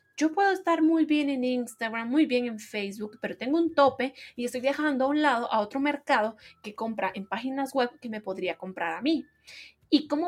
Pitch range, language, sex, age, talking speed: 215-275 Hz, Spanish, female, 20-39, 215 wpm